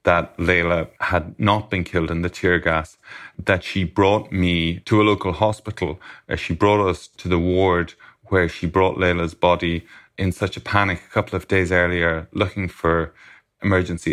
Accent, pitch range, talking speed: Irish, 85-95 Hz, 175 wpm